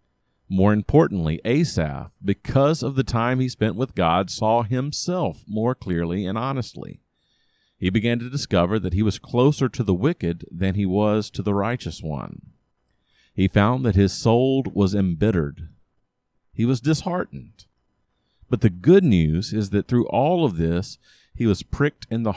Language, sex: English, male